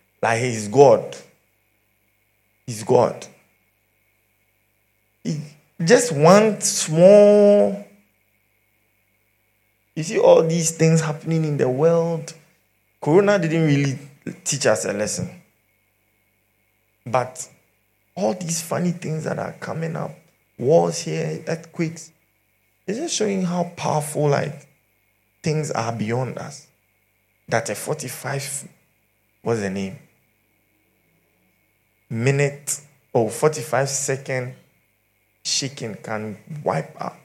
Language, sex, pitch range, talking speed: English, male, 110-155 Hz, 100 wpm